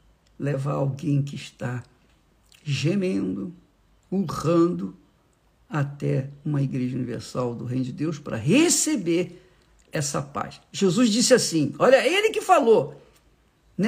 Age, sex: 50-69, male